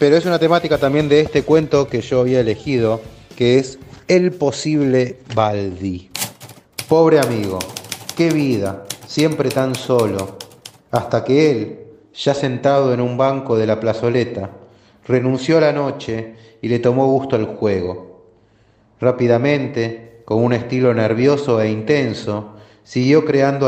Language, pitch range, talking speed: Spanish, 110-130 Hz, 135 wpm